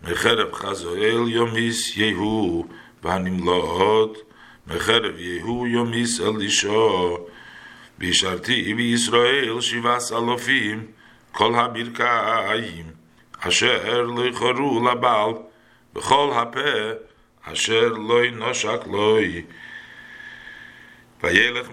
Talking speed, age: 75 wpm, 60-79